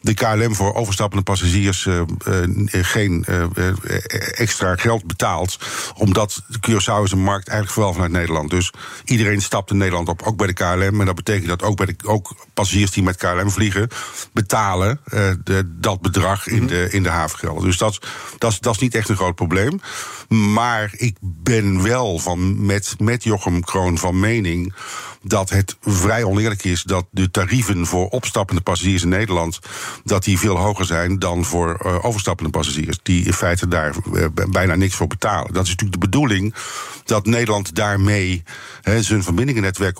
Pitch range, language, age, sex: 90-110 Hz, Dutch, 50-69, male